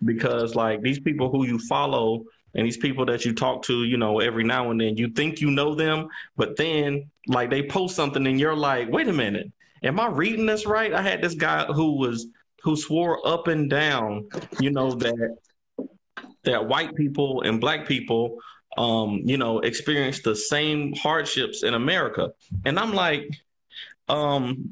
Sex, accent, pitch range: male, American, 115-150 Hz